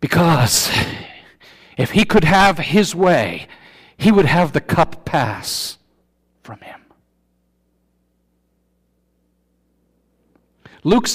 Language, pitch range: English, 130-185 Hz